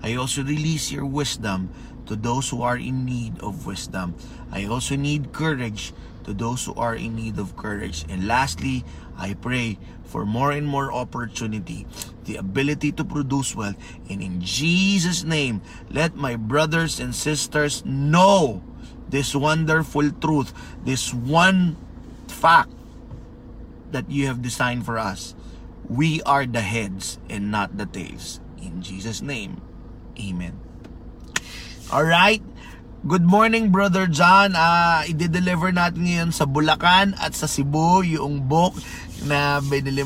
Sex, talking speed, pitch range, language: male, 135 wpm, 115-160 Hz, Filipino